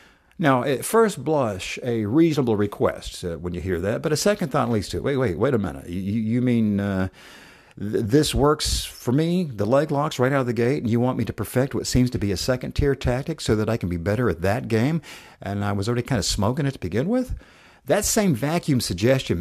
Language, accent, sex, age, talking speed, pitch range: English, American, male, 50-69, 240 wpm, 95-125 Hz